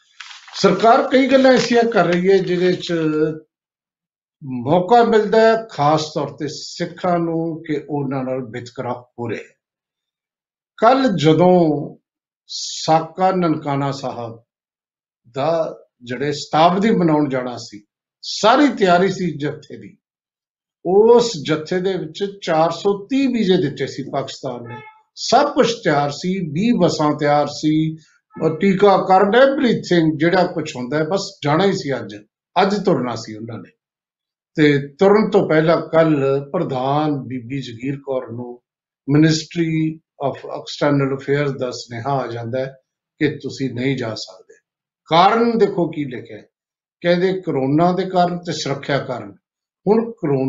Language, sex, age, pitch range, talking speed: Punjabi, male, 50-69, 140-190 Hz, 105 wpm